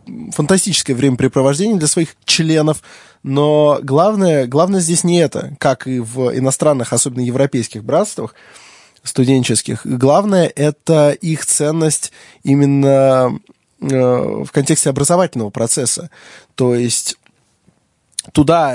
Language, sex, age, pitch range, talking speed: Russian, male, 20-39, 130-160 Hz, 100 wpm